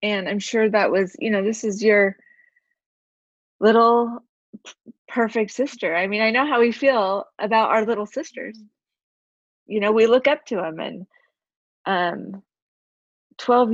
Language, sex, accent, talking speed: English, female, American, 150 wpm